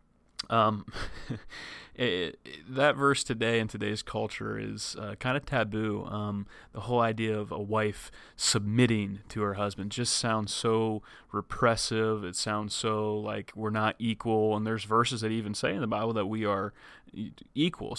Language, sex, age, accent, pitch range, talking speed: English, male, 30-49, American, 105-120 Hz, 165 wpm